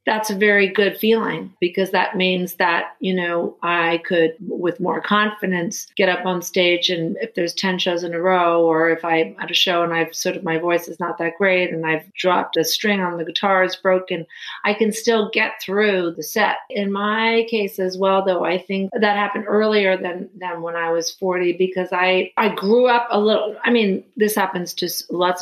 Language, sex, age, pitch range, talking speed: English, female, 40-59, 175-200 Hz, 215 wpm